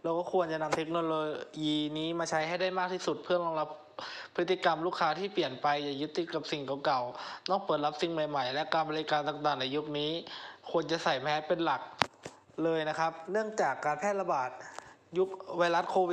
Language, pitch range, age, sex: Thai, 150-180 Hz, 20-39, male